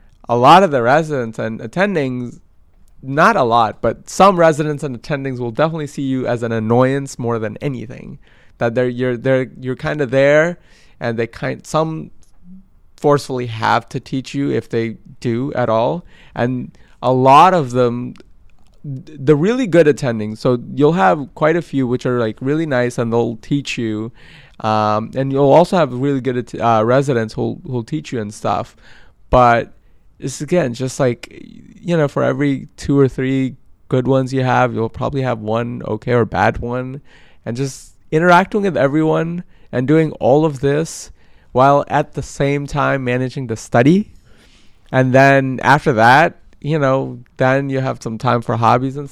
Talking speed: 175 wpm